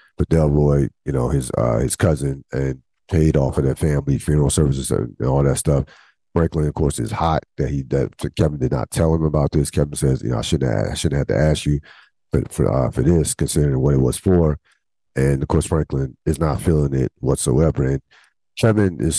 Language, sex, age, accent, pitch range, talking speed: English, male, 50-69, American, 70-80 Hz, 225 wpm